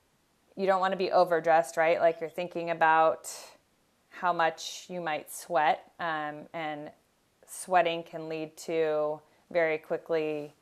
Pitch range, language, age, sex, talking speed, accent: 160-175 Hz, English, 30-49, female, 135 wpm, American